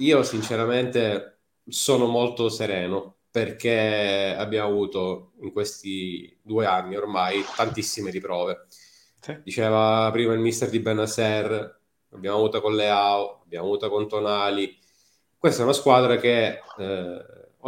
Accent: native